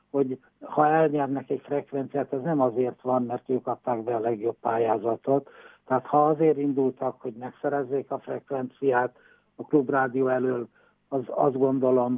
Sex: male